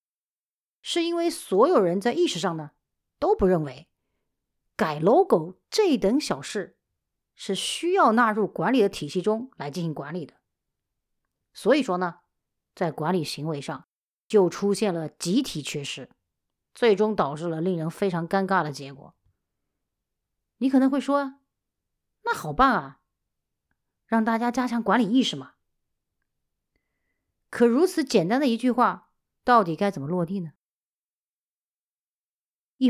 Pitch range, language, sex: 160-265 Hz, Chinese, female